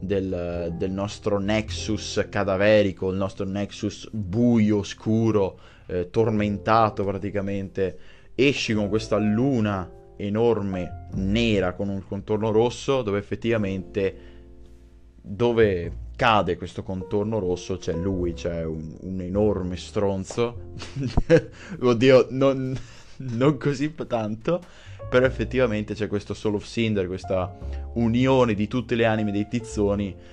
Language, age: Italian, 20-39